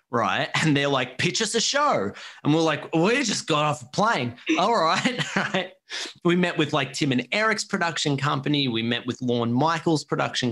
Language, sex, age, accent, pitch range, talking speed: English, male, 30-49, Australian, 110-160 Hz, 205 wpm